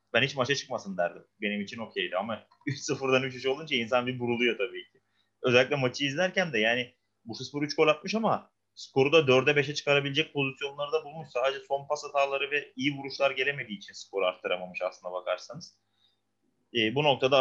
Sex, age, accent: male, 30-49, native